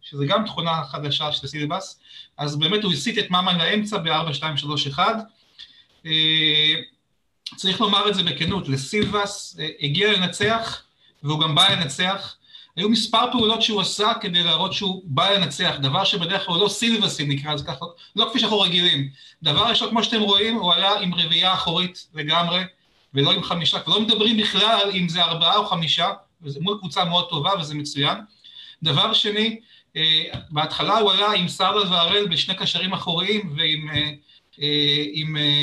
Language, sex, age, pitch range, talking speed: Hebrew, male, 40-59, 155-210 Hz, 160 wpm